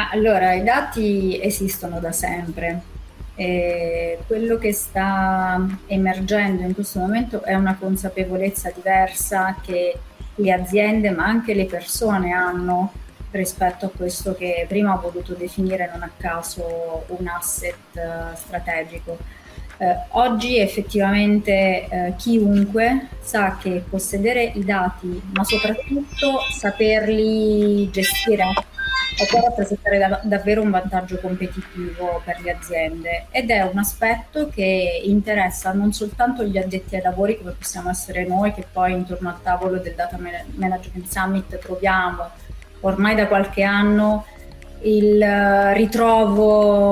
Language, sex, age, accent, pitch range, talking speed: Italian, female, 30-49, native, 180-210 Hz, 120 wpm